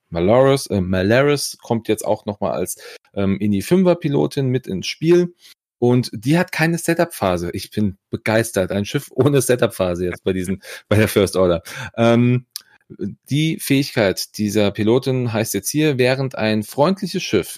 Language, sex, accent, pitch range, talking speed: German, male, German, 100-130 Hz, 155 wpm